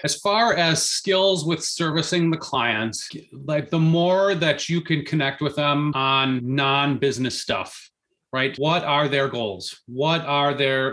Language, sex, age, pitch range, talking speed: English, male, 30-49, 130-160 Hz, 155 wpm